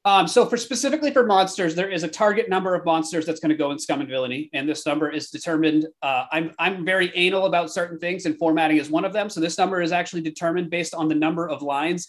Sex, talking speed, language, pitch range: male, 260 wpm, English, 150-180 Hz